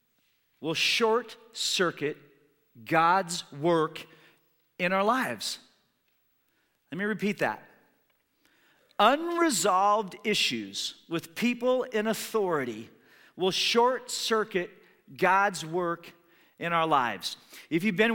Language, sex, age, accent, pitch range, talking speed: English, male, 40-59, American, 160-220 Hz, 90 wpm